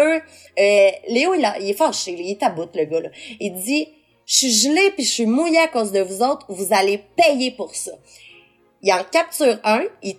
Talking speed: 210 wpm